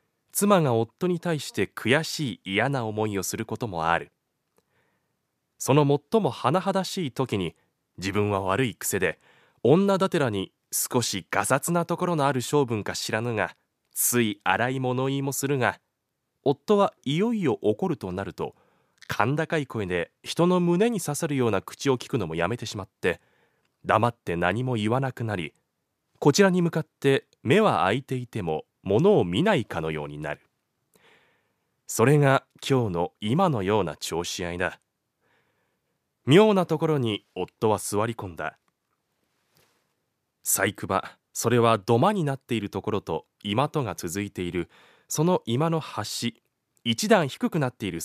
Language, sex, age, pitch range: Japanese, male, 20-39, 100-160 Hz